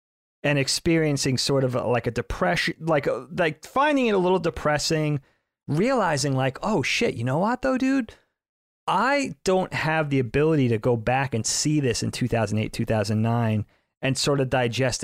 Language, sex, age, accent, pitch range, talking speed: English, male, 30-49, American, 115-145 Hz, 170 wpm